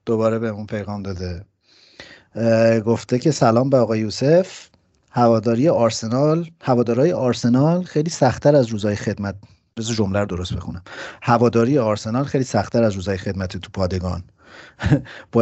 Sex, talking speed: male, 130 wpm